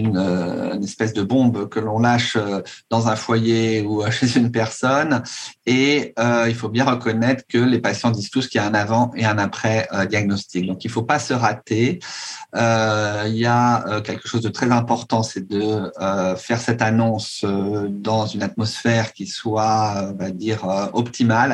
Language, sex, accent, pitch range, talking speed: French, male, French, 105-120 Hz, 175 wpm